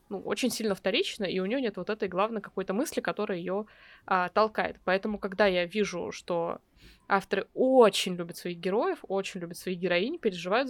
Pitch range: 185-225 Hz